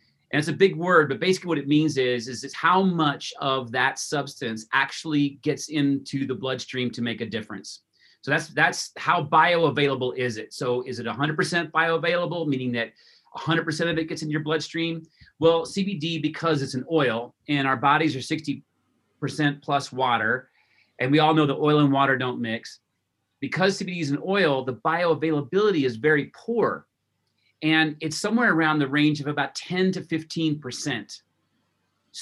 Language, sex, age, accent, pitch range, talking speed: English, male, 30-49, American, 130-160 Hz, 175 wpm